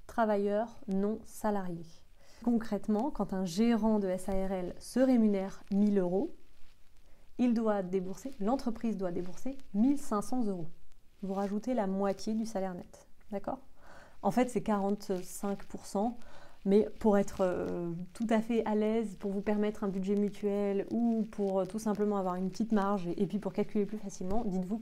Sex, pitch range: female, 195-225 Hz